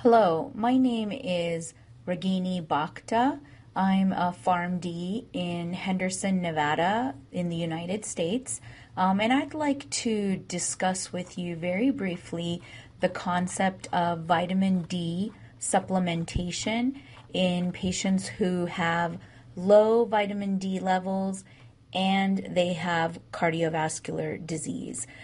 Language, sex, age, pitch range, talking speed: Persian, female, 30-49, 170-195 Hz, 105 wpm